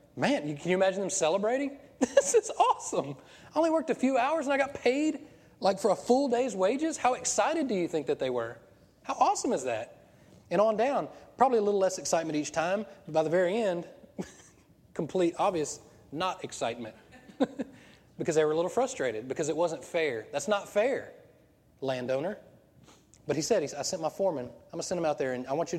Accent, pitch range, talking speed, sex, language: American, 120-190 Hz, 200 wpm, male, English